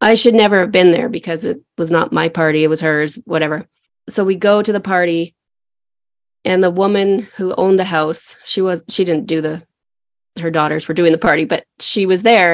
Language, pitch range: English, 170-220 Hz